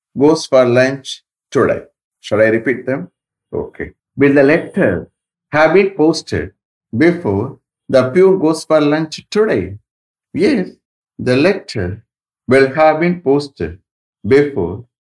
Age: 60-79